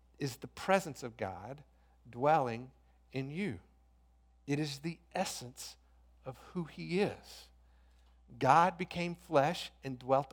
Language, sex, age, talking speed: English, male, 50-69, 120 wpm